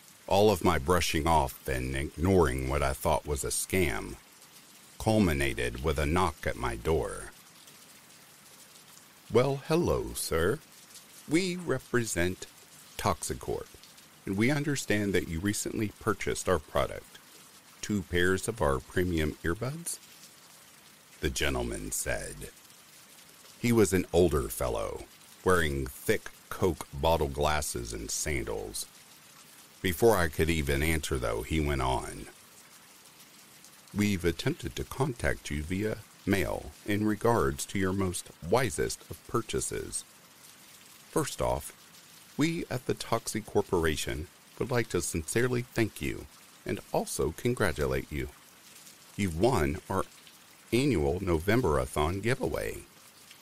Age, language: 50-69, English